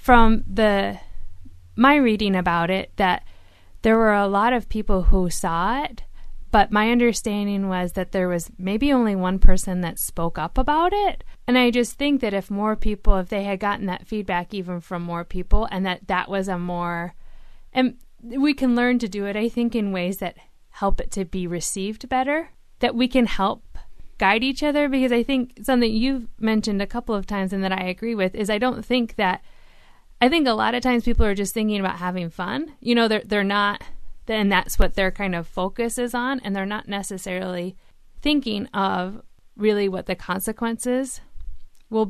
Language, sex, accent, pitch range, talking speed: English, female, American, 185-235 Hz, 200 wpm